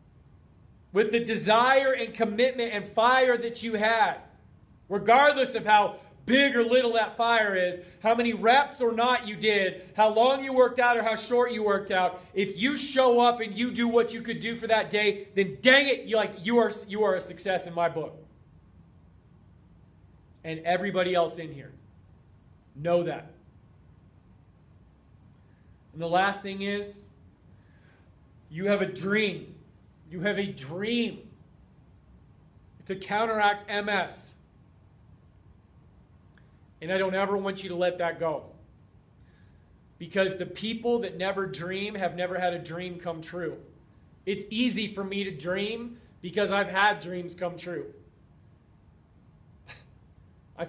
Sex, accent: male, American